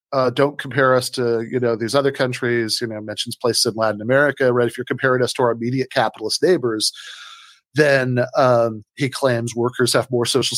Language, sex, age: English, male, 40-59